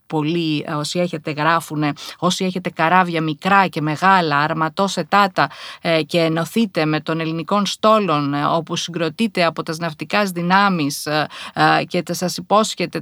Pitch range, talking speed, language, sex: 150-185 Hz, 125 wpm, Greek, female